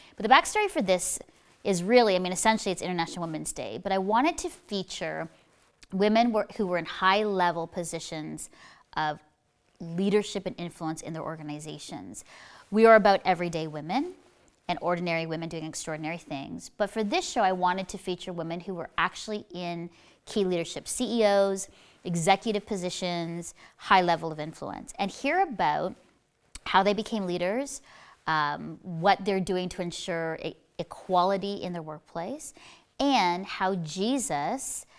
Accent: American